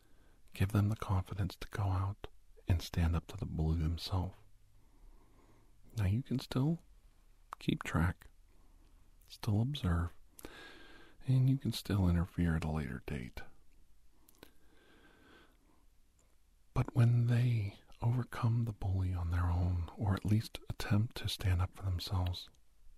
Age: 50-69